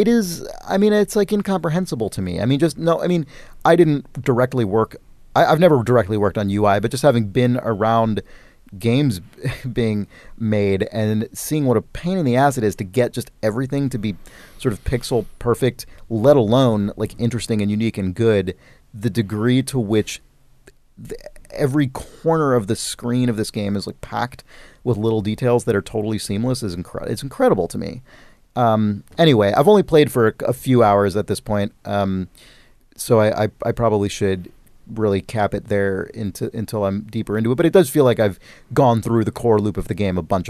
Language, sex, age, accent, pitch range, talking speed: English, male, 30-49, American, 100-130 Hz, 195 wpm